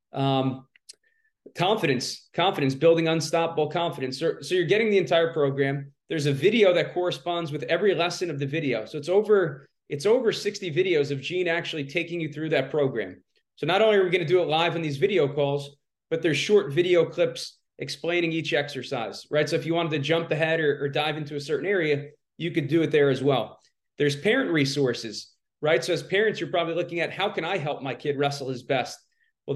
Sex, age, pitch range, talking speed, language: male, 30-49, 145-175 Hz, 210 wpm, English